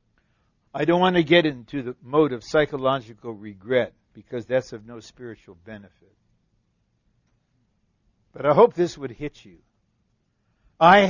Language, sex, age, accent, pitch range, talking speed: English, male, 60-79, American, 125-190 Hz, 135 wpm